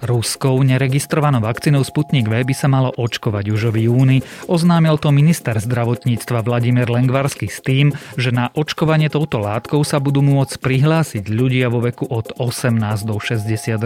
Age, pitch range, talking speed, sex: 30-49, 110-140 Hz, 150 wpm, male